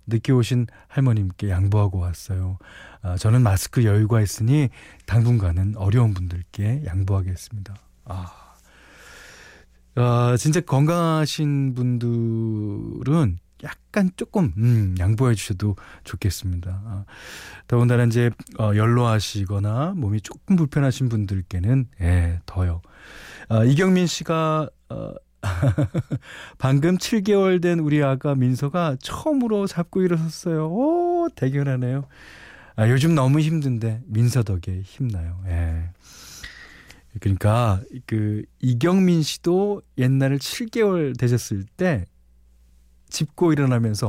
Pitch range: 95-140 Hz